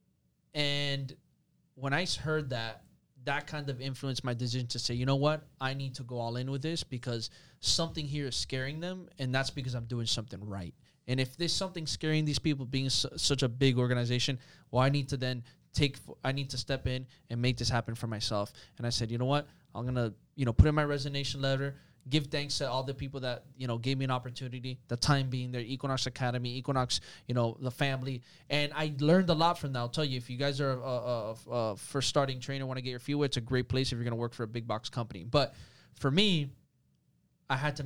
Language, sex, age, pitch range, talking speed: English, male, 20-39, 120-140 Hz, 240 wpm